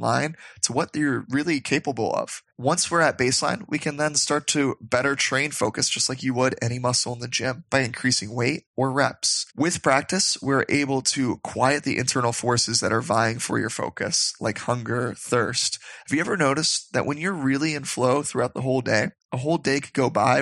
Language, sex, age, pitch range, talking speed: English, male, 20-39, 125-145 Hz, 210 wpm